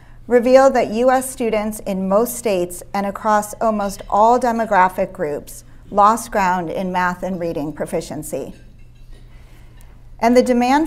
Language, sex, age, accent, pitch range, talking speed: English, female, 40-59, American, 180-225 Hz, 125 wpm